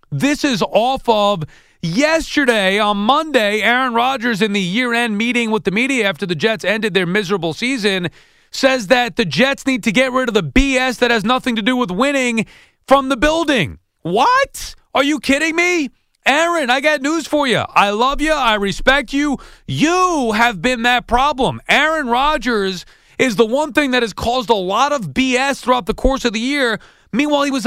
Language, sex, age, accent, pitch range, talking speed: English, male, 30-49, American, 215-265 Hz, 190 wpm